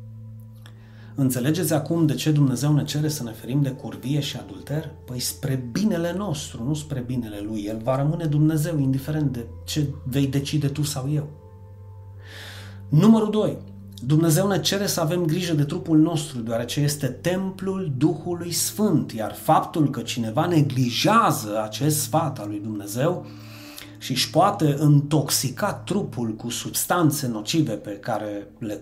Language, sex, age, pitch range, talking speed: Romanian, male, 30-49, 110-160 Hz, 150 wpm